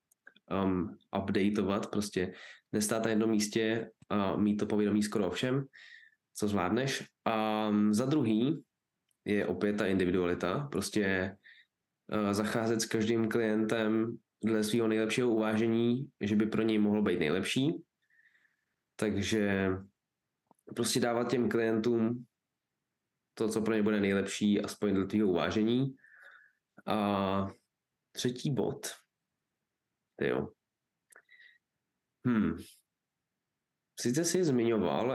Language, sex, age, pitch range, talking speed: Czech, male, 20-39, 105-130 Hz, 110 wpm